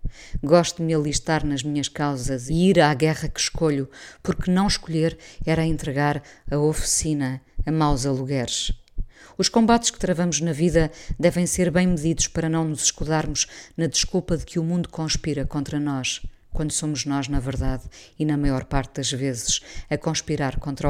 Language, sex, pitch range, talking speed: Portuguese, female, 140-165 Hz, 170 wpm